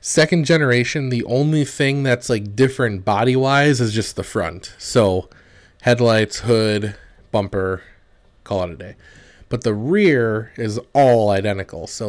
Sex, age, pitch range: male, 30-49, 100-125 Hz